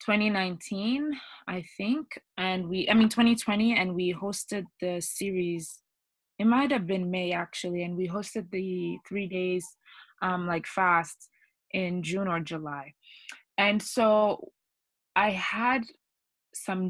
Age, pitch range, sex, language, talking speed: 20-39, 165-195 Hz, female, English, 130 wpm